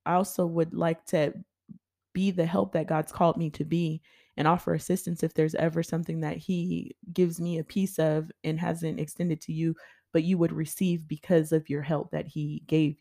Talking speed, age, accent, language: 205 wpm, 20-39, American, English